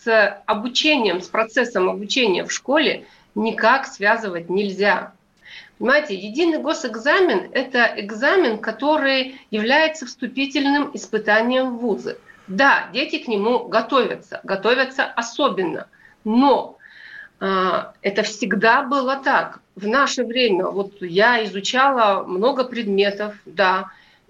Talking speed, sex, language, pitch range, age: 105 wpm, female, Russian, 205-270 Hz, 50-69